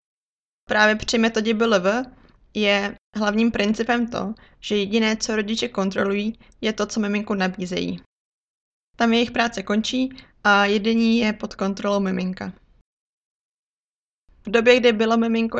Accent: native